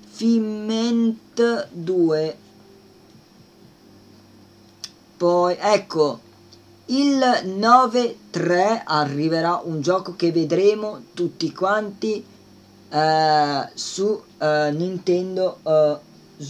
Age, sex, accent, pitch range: 30-49, female, native, 155-210 Hz